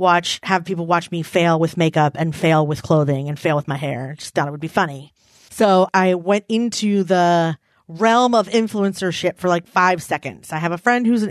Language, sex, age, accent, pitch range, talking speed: English, female, 30-49, American, 165-210 Hz, 220 wpm